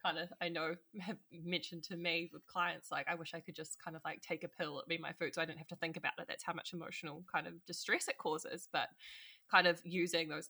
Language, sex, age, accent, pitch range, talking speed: English, female, 20-39, Australian, 165-190 Hz, 275 wpm